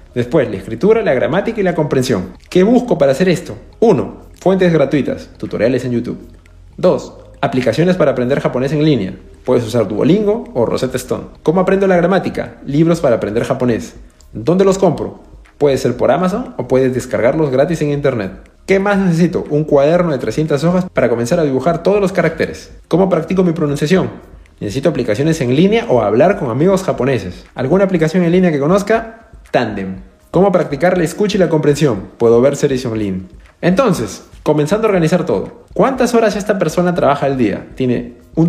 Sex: male